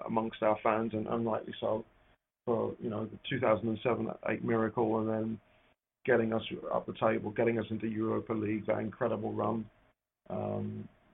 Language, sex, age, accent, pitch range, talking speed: English, male, 40-59, British, 110-120 Hz, 155 wpm